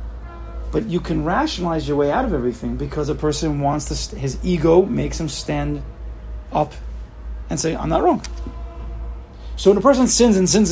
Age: 30-49